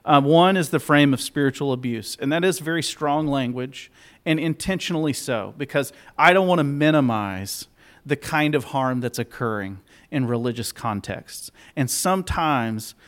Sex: male